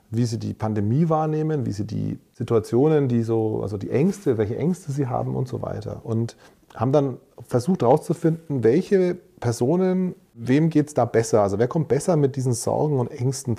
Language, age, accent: German, 40-59, German